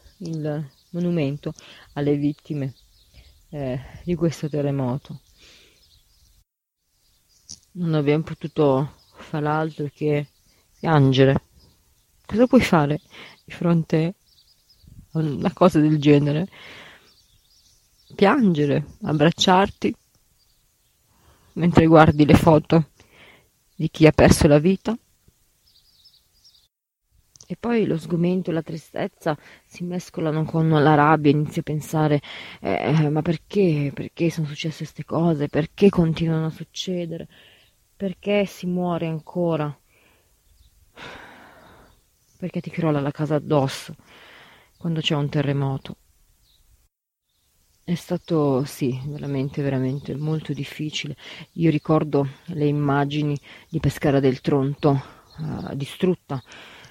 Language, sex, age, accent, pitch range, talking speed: Italian, female, 30-49, native, 140-165 Hz, 100 wpm